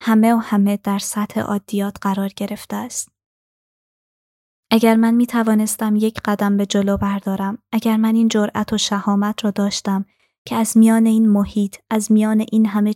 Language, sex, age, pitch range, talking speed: Persian, female, 20-39, 200-220 Hz, 160 wpm